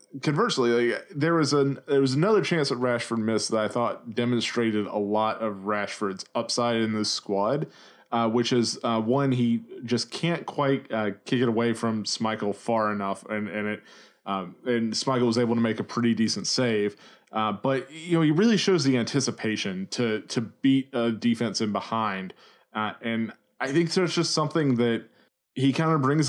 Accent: American